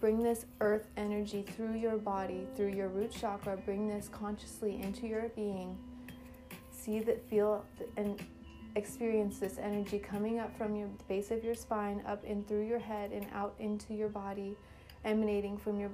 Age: 30-49